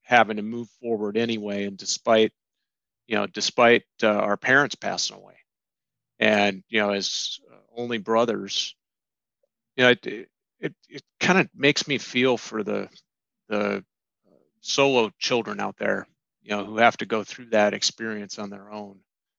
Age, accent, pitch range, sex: 40-59, American, 100-115 Hz, male